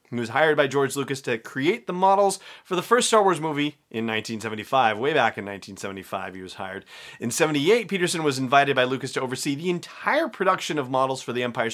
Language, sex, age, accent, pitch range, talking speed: English, male, 30-49, American, 125-175 Hz, 215 wpm